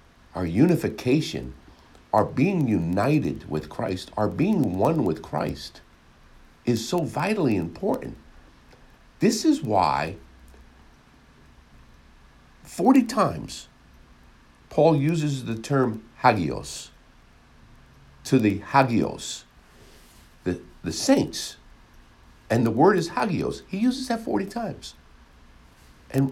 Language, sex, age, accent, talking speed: English, male, 60-79, American, 100 wpm